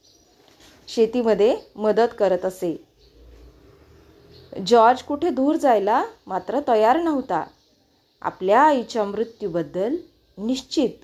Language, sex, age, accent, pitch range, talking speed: Marathi, female, 20-39, native, 200-270 Hz, 80 wpm